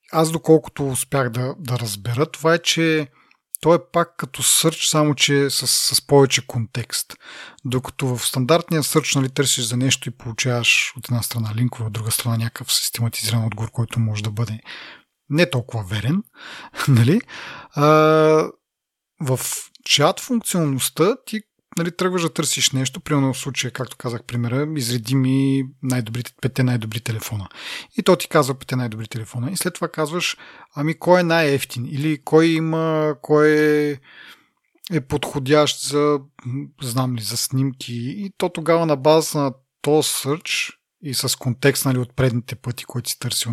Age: 40-59